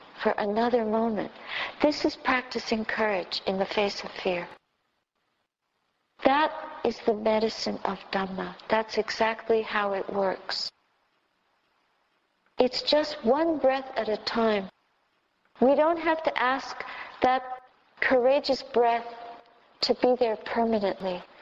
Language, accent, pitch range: English, American, 225-275 Hz